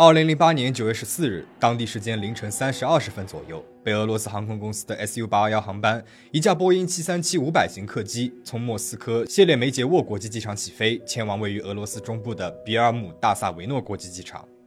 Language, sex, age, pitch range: Chinese, male, 20-39, 110-145 Hz